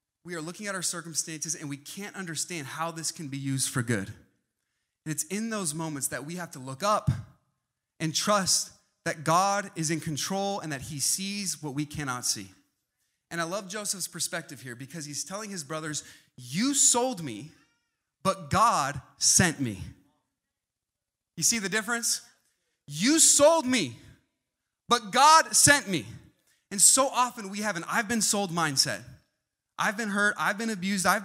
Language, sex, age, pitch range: English, male, 30-49, 160-230 Hz